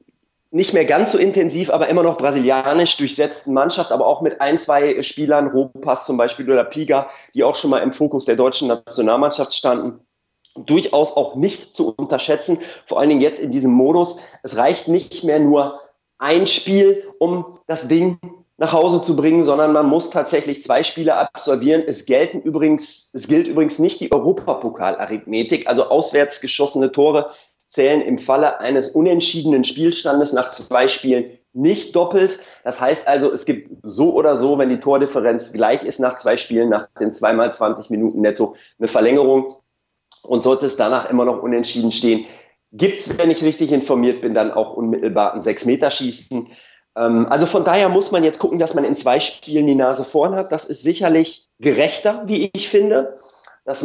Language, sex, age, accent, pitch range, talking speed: German, male, 30-49, German, 130-170 Hz, 175 wpm